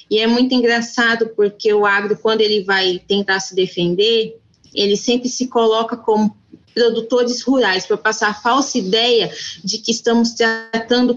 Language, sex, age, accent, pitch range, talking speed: Portuguese, female, 20-39, Brazilian, 200-240 Hz, 155 wpm